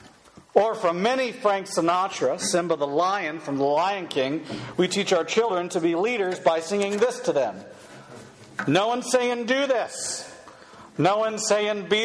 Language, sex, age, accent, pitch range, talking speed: English, male, 50-69, American, 150-215 Hz, 165 wpm